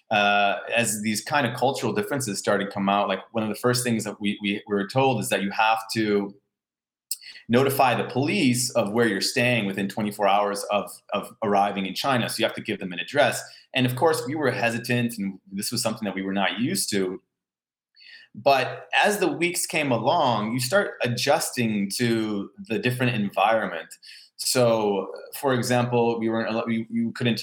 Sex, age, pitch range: male, 30-49, 100-125 Hz